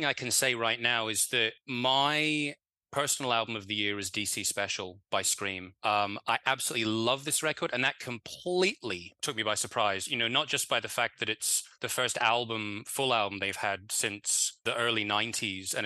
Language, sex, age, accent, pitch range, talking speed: English, male, 20-39, British, 105-125 Hz, 195 wpm